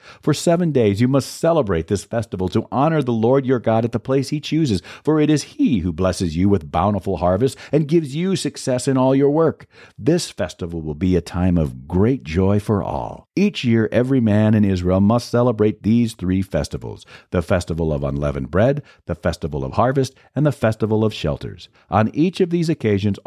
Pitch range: 95-130 Hz